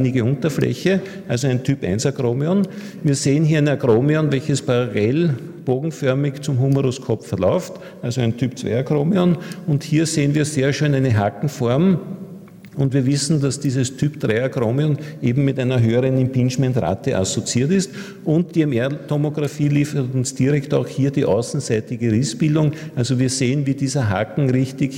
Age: 50-69